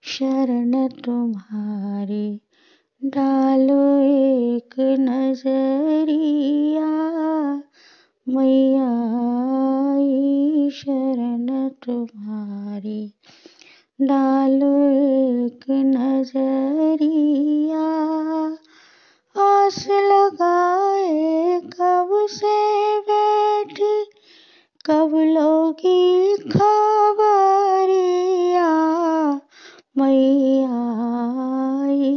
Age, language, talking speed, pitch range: 20-39, Hindi, 35 wpm, 260-315 Hz